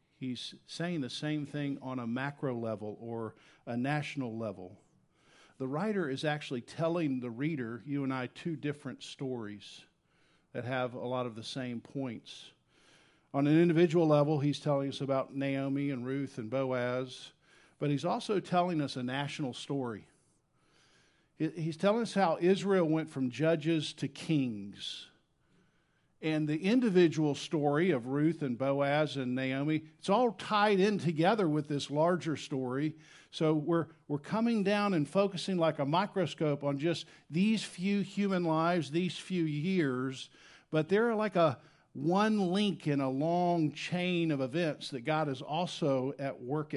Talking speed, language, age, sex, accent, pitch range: 155 wpm, English, 50-69, male, American, 130-170 Hz